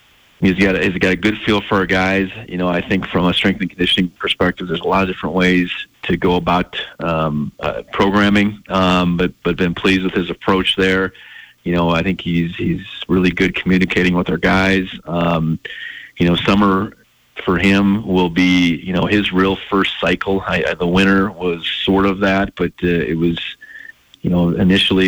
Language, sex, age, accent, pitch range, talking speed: English, male, 30-49, American, 90-95 Hz, 200 wpm